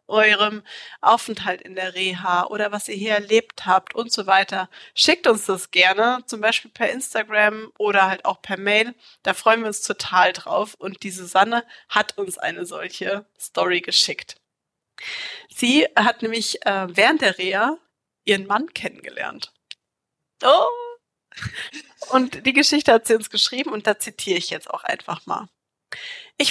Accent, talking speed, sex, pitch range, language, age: German, 150 wpm, female, 190-245 Hz, German, 30-49